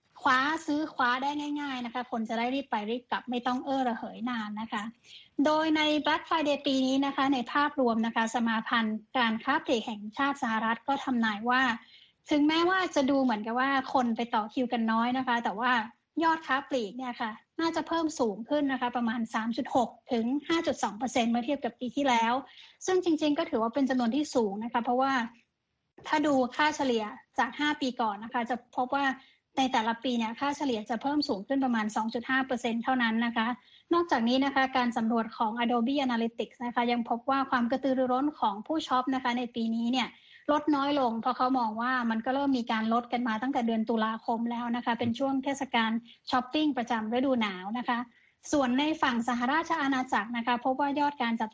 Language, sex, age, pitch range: Thai, female, 20-39, 235-275 Hz